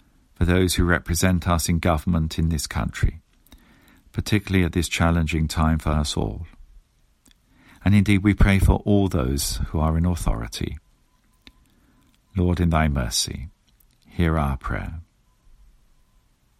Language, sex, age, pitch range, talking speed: English, male, 50-69, 80-95 Hz, 130 wpm